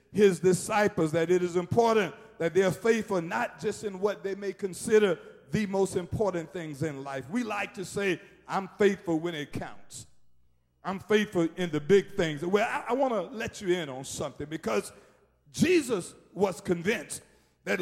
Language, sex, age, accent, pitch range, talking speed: English, male, 50-69, American, 170-230 Hz, 180 wpm